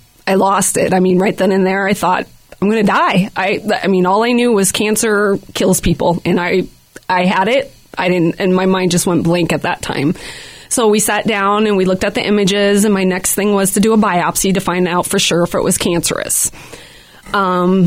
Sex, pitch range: female, 185-225 Hz